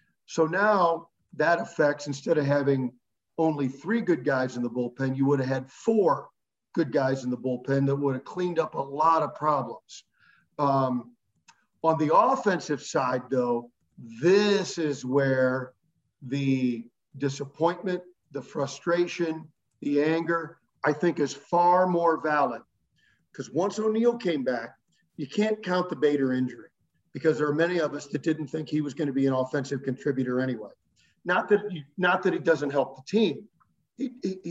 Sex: male